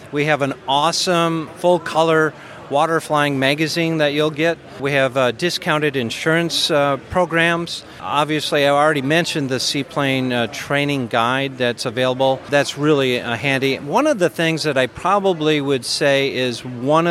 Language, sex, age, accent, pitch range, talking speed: English, male, 40-59, American, 130-160 Hz, 155 wpm